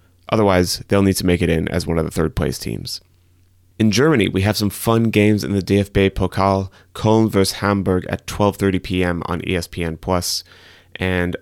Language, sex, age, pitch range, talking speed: English, male, 30-49, 90-100 Hz, 170 wpm